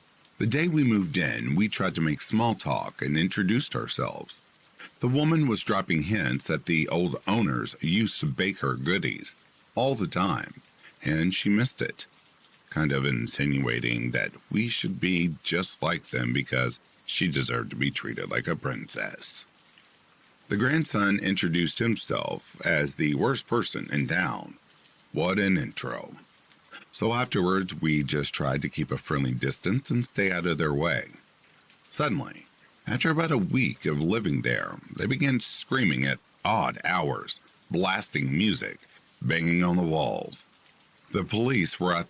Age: 50-69